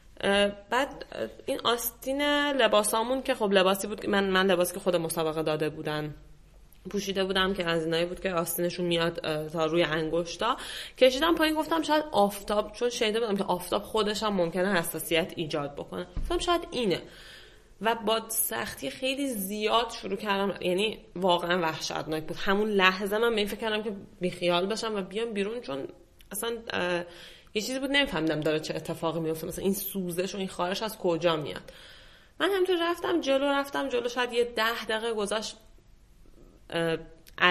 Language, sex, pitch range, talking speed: Persian, female, 170-225 Hz, 160 wpm